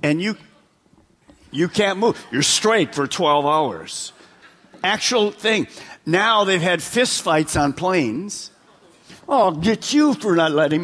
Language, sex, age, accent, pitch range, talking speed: English, male, 50-69, American, 180-250 Hz, 145 wpm